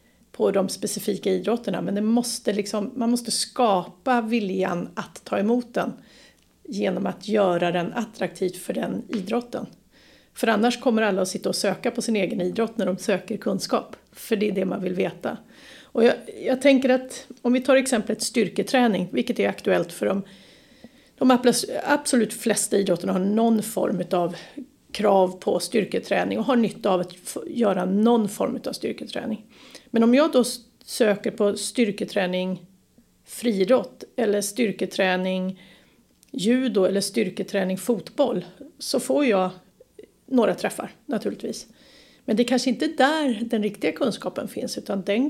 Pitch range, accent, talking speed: 195-255 Hz, native, 150 wpm